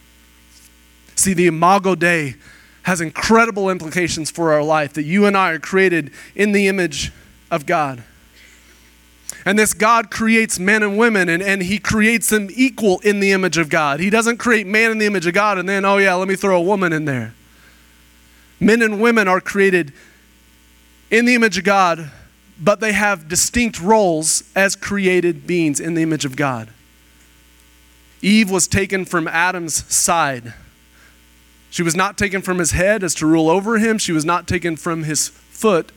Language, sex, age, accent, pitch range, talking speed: English, male, 30-49, American, 125-190 Hz, 180 wpm